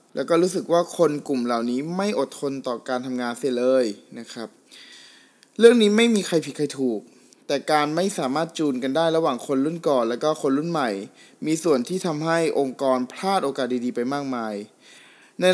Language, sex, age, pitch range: Thai, male, 20-39, 130-175 Hz